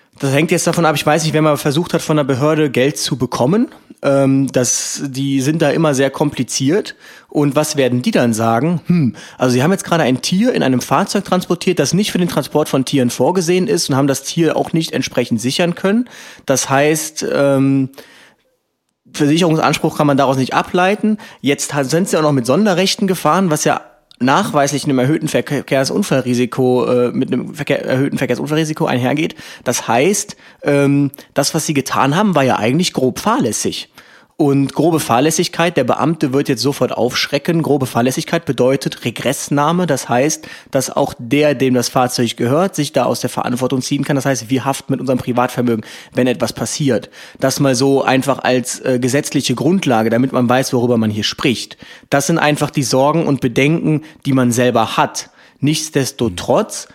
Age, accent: 30-49, German